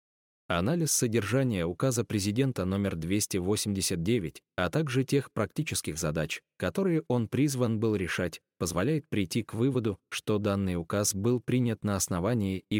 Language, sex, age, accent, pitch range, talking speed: Russian, male, 20-39, native, 90-120 Hz, 130 wpm